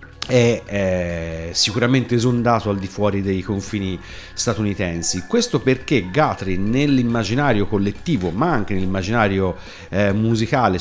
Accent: native